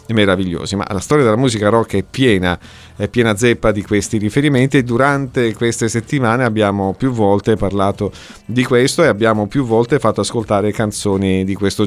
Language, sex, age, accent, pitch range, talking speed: Italian, male, 50-69, native, 100-140 Hz, 170 wpm